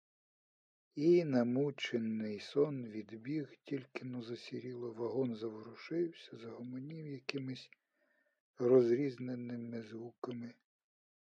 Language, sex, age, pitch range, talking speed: Ukrainian, male, 50-69, 115-135 Hz, 70 wpm